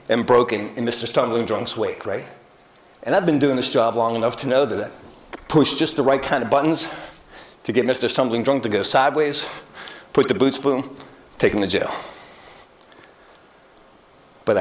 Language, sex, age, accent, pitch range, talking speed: English, male, 50-69, American, 120-160 Hz, 180 wpm